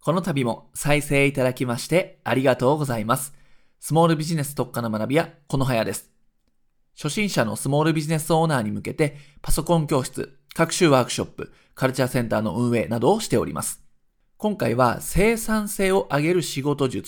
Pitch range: 120-180 Hz